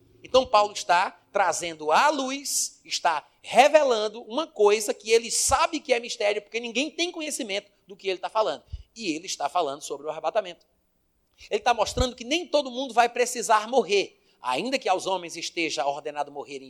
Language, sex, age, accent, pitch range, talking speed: Portuguese, male, 30-49, Brazilian, 170-250 Hz, 175 wpm